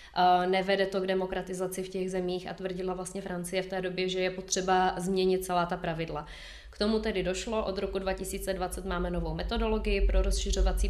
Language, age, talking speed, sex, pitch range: Czech, 20-39, 180 wpm, female, 180-190 Hz